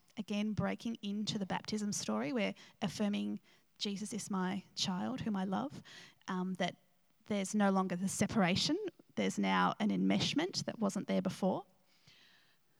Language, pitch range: English, 190-240 Hz